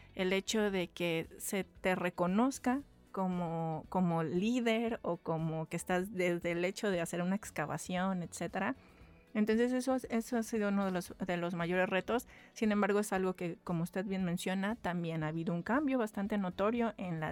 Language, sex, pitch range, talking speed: Spanish, female, 175-210 Hz, 180 wpm